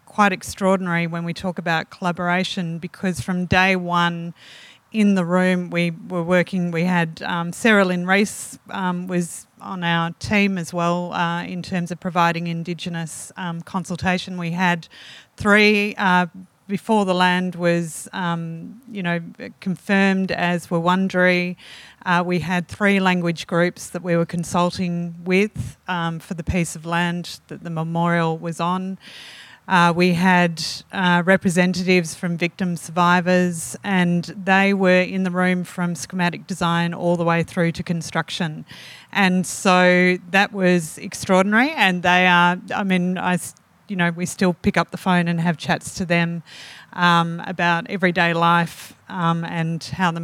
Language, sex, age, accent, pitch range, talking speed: English, female, 30-49, Australian, 170-185 Hz, 150 wpm